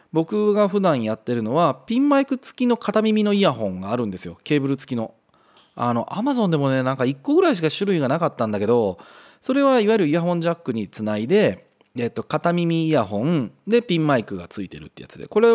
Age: 30-49